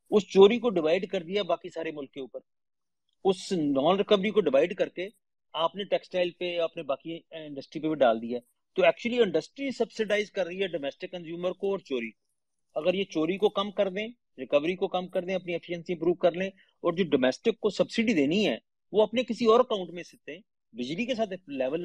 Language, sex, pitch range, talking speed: Urdu, male, 165-215 Hz, 205 wpm